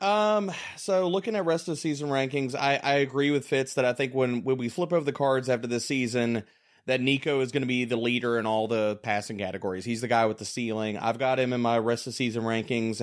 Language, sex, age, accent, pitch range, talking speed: English, male, 30-49, American, 115-150 Hz, 255 wpm